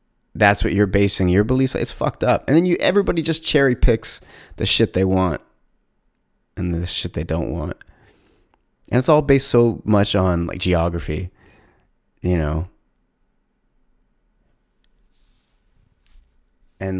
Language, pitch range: English, 90-105 Hz